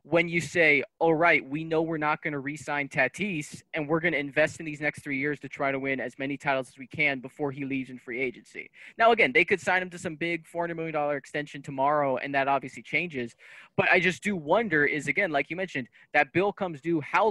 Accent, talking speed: American, 250 wpm